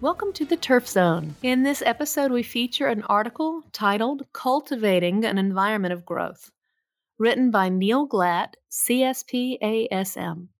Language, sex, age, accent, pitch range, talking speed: English, female, 30-49, American, 185-245 Hz, 130 wpm